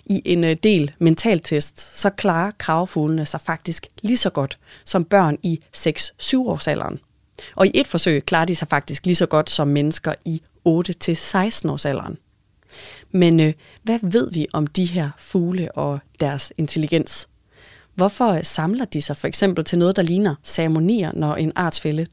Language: Danish